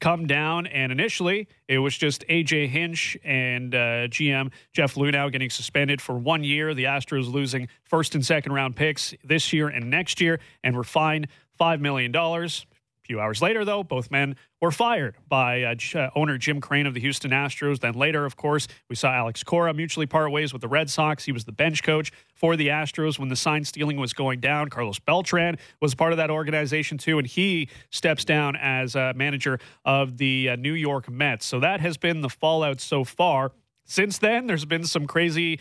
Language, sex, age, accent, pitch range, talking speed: English, male, 30-49, American, 135-165 Hz, 205 wpm